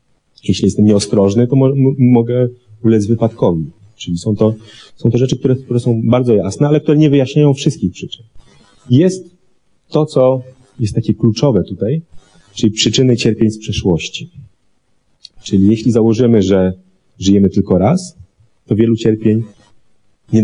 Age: 30-49